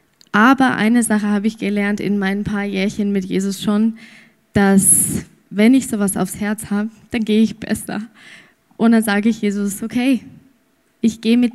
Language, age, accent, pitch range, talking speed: German, 20-39, German, 200-225 Hz, 170 wpm